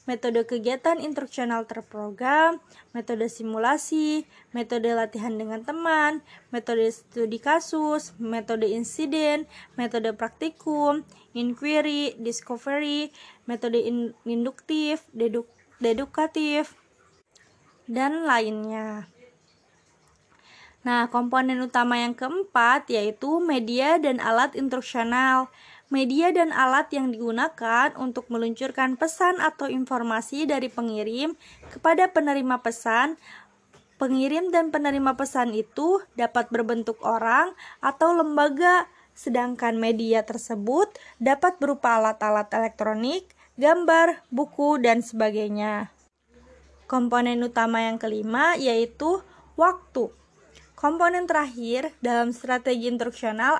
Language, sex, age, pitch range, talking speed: Indonesian, female, 20-39, 230-300 Hz, 90 wpm